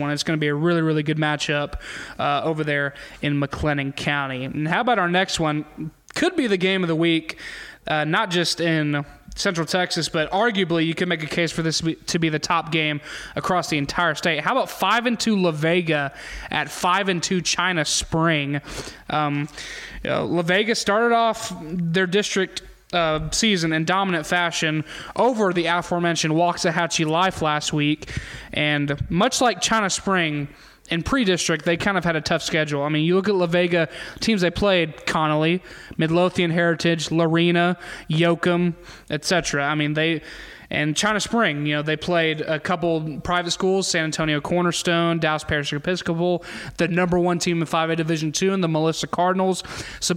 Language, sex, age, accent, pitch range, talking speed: English, male, 20-39, American, 155-180 Hz, 180 wpm